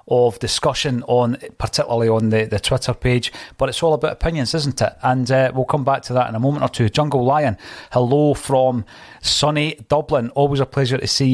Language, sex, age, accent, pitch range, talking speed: English, male, 30-49, British, 120-145 Hz, 205 wpm